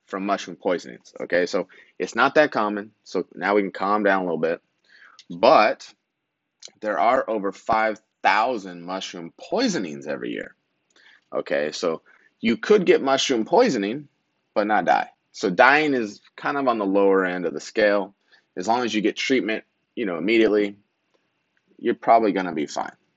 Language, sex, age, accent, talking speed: English, male, 30-49, American, 165 wpm